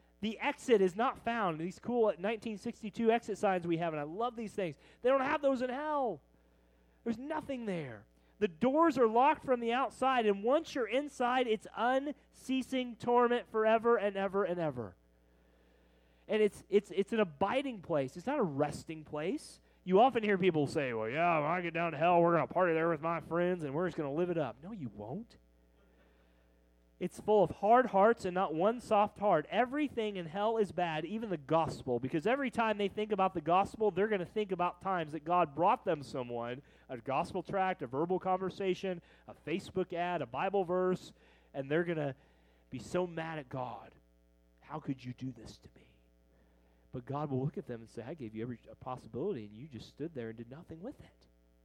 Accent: American